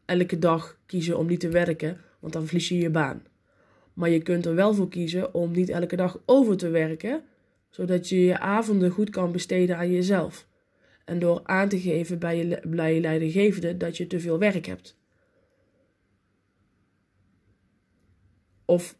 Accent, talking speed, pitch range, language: Dutch, 165 wpm, 150-185 Hz, Dutch